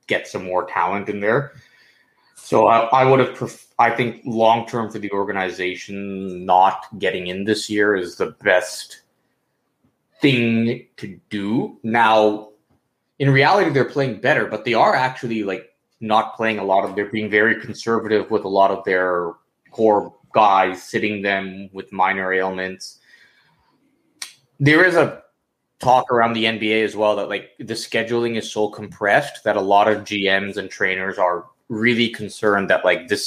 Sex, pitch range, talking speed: male, 100-115 Hz, 160 wpm